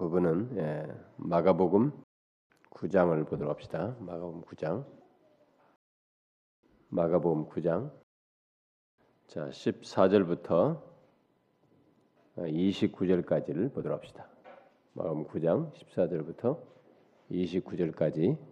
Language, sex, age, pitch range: Korean, male, 40-59, 80-95 Hz